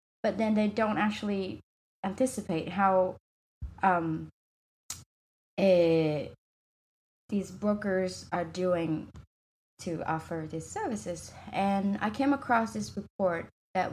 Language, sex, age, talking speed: English, female, 20-39, 105 wpm